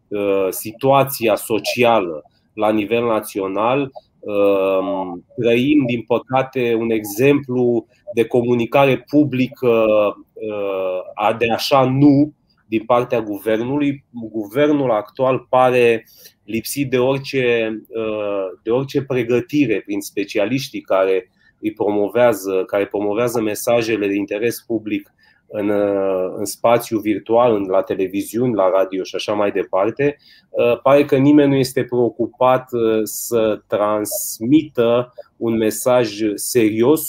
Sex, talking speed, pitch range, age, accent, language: male, 100 wpm, 105-130 Hz, 30-49, native, Romanian